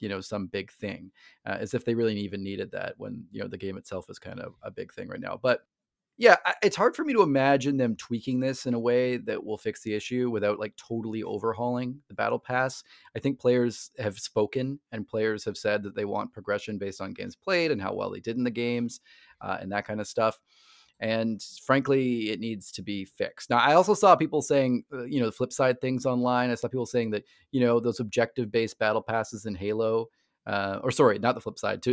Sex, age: male, 30-49